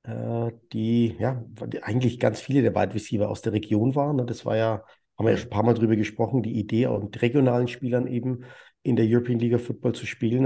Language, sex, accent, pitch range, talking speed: German, male, German, 115-135 Hz, 210 wpm